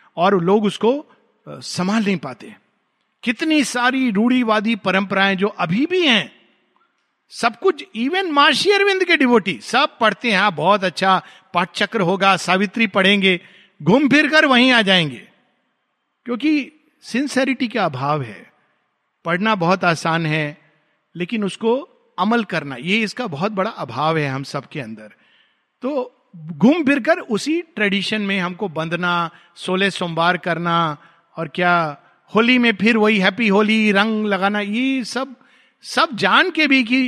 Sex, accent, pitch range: male, native, 180-250 Hz